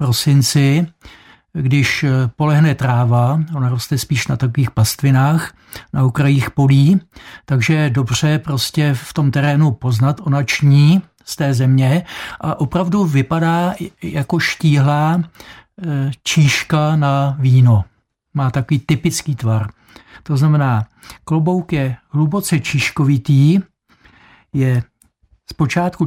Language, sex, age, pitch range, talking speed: Czech, male, 60-79, 130-160 Hz, 105 wpm